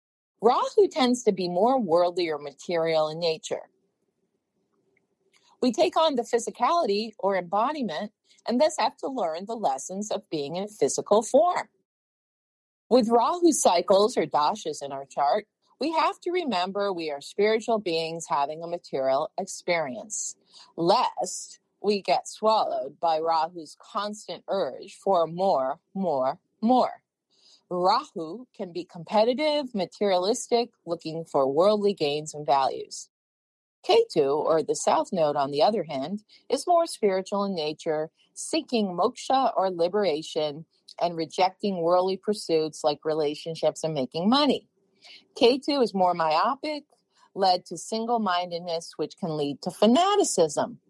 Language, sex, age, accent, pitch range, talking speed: English, female, 40-59, American, 165-235 Hz, 130 wpm